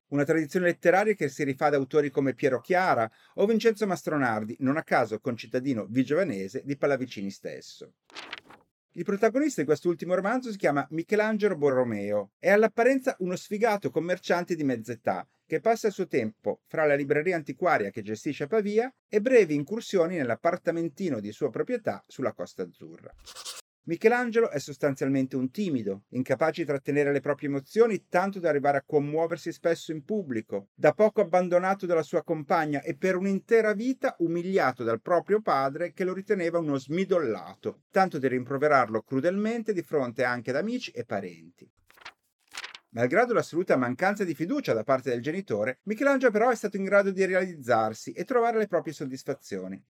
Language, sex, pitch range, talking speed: Italian, male, 135-200 Hz, 160 wpm